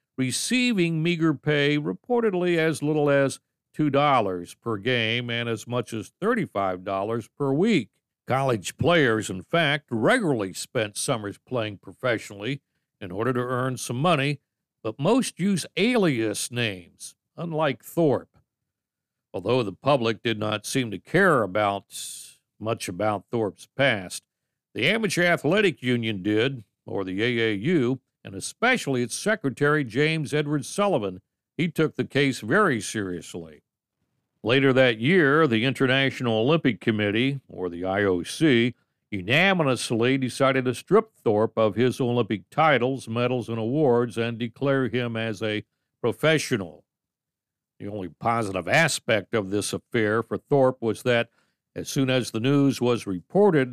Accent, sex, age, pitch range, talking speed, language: American, male, 60-79, 110-145 Hz, 135 wpm, English